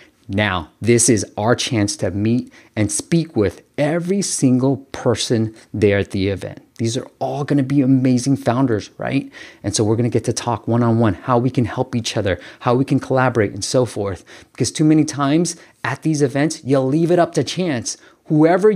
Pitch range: 105-145 Hz